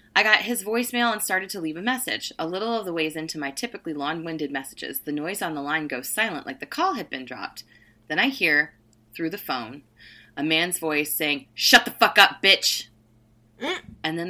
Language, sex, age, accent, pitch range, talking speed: English, female, 20-39, American, 145-235 Hz, 210 wpm